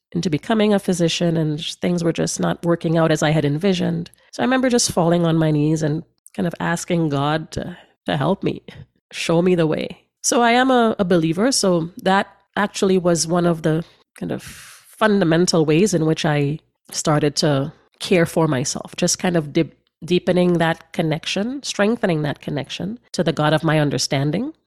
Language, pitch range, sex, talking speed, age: English, 165-210 Hz, female, 185 wpm, 30-49